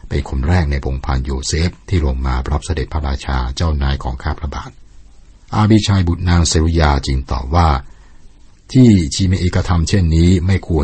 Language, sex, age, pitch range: Thai, male, 60-79, 70-85 Hz